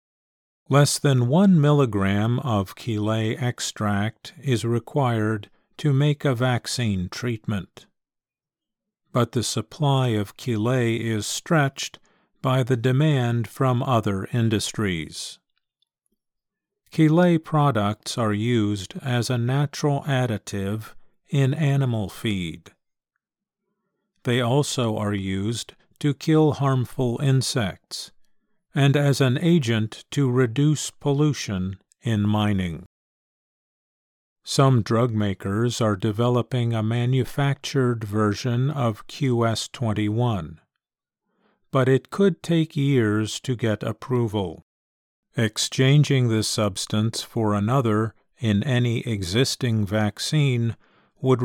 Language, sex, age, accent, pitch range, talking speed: English, male, 50-69, American, 110-140 Hz, 95 wpm